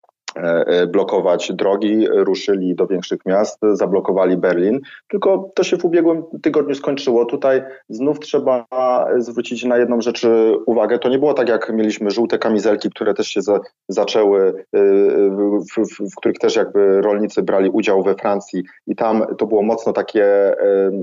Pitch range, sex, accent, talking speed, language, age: 105-130 Hz, male, native, 145 wpm, Polish, 30-49